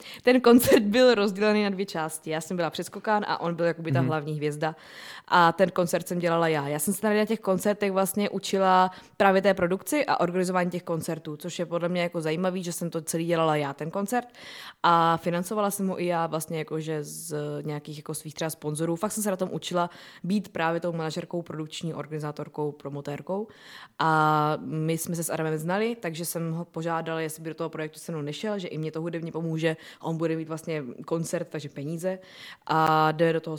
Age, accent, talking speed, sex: 20-39, native, 205 wpm, female